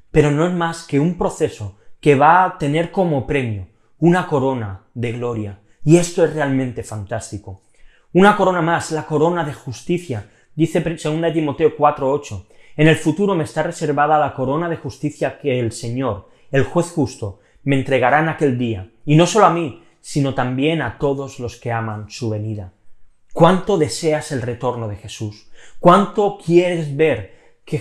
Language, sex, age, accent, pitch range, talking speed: Spanish, male, 30-49, Spanish, 115-160 Hz, 170 wpm